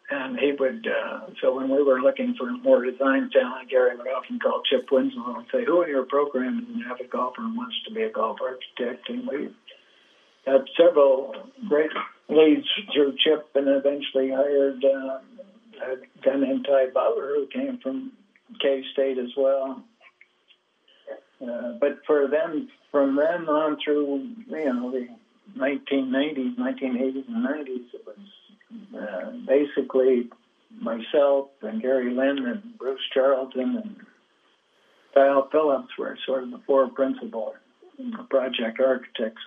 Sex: male